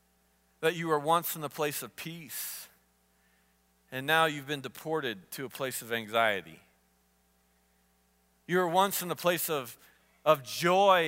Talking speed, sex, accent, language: 150 wpm, male, American, English